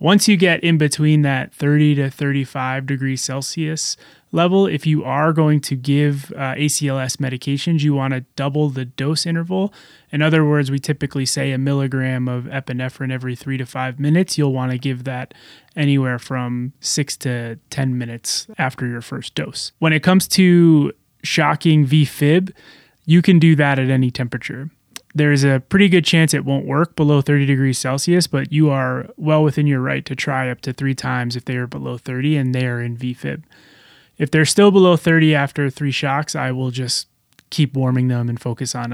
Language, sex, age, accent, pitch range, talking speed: English, male, 20-39, American, 130-155 Hz, 190 wpm